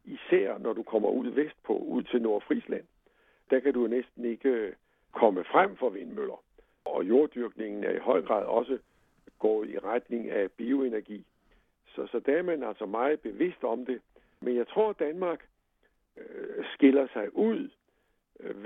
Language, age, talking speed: Danish, 60-79, 160 wpm